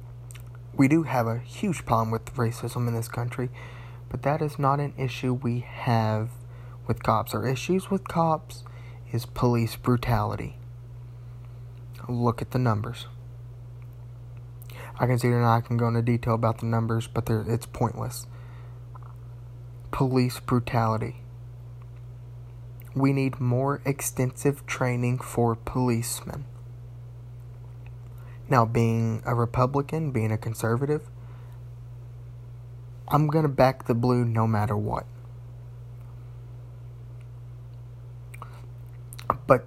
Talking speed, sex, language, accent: 110 wpm, male, English, American